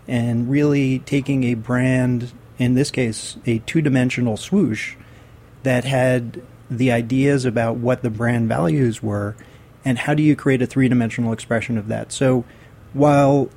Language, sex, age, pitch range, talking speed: English, male, 40-59, 115-135 Hz, 145 wpm